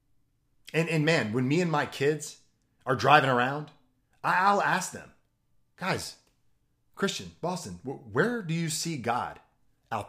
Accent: American